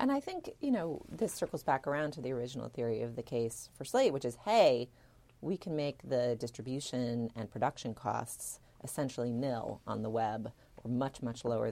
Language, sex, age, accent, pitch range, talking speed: English, female, 30-49, American, 110-125 Hz, 195 wpm